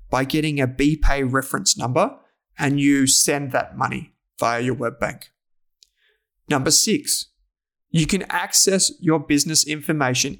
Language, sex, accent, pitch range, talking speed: English, male, Australian, 130-170 Hz, 135 wpm